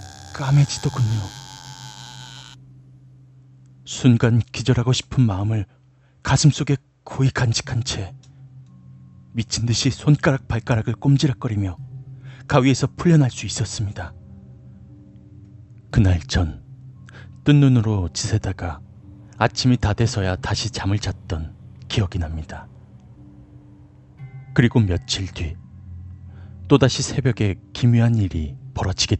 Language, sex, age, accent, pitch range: Korean, male, 40-59, native, 100-130 Hz